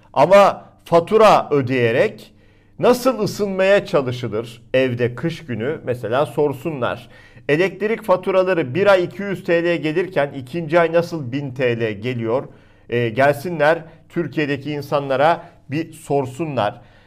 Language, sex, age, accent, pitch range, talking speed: Turkish, male, 50-69, native, 120-170 Hz, 105 wpm